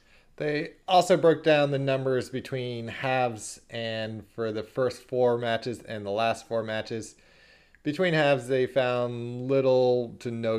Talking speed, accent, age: 145 wpm, American, 20-39